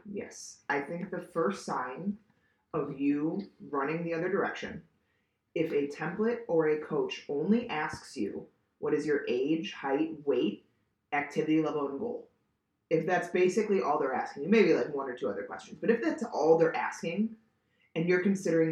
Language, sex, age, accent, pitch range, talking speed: English, female, 30-49, American, 160-225 Hz, 175 wpm